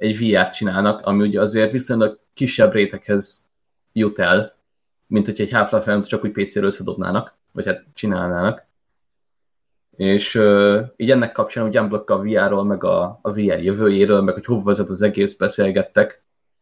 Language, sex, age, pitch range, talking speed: Hungarian, male, 20-39, 100-110 Hz, 155 wpm